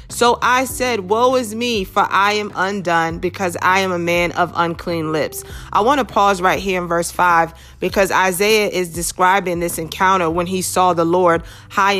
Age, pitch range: 30-49, 175-205 Hz